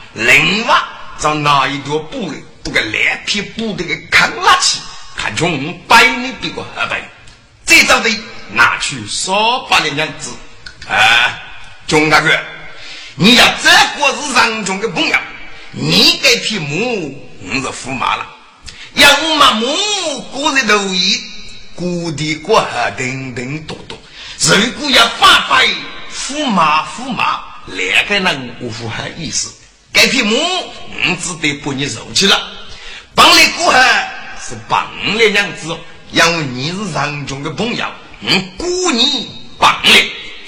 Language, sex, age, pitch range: Chinese, male, 50-69, 155-250 Hz